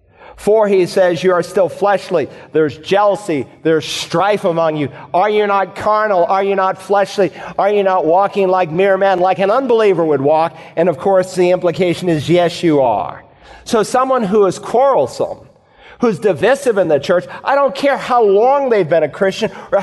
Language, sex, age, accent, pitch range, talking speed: English, male, 40-59, American, 160-200 Hz, 190 wpm